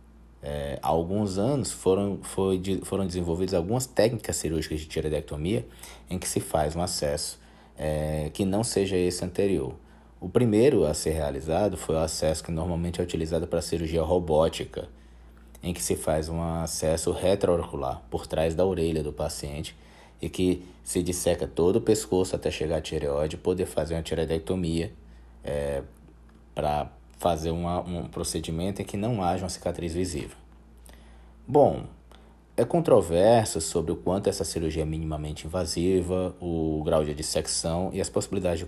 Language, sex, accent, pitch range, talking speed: Portuguese, male, Brazilian, 75-90 Hz, 155 wpm